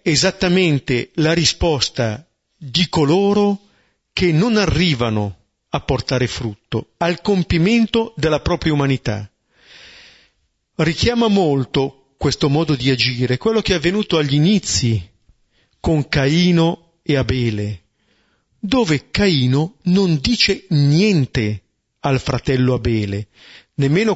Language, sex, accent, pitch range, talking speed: Italian, male, native, 125-185 Hz, 100 wpm